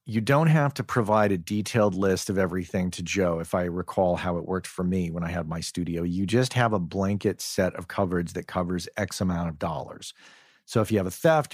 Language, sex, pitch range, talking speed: English, male, 90-110 Hz, 235 wpm